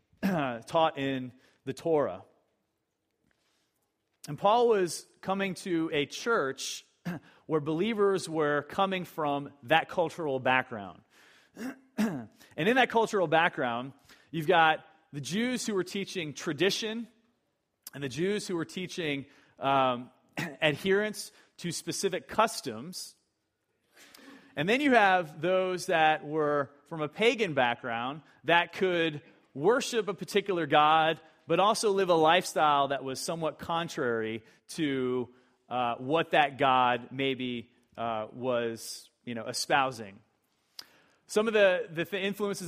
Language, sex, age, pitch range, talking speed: English, male, 30-49, 135-185 Hz, 120 wpm